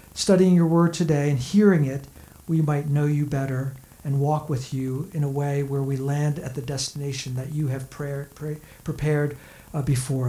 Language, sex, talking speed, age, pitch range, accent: English, male, 175 wpm, 50-69, 135-180 Hz, American